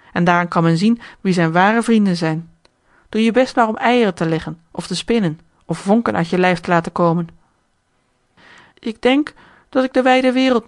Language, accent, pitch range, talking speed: Dutch, Dutch, 165-215 Hz, 200 wpm